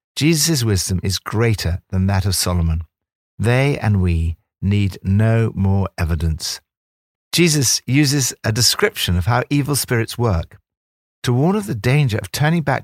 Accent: British